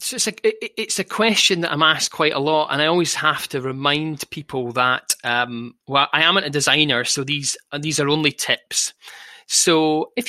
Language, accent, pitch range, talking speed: English, British, 130-165 Hz, 195 wpm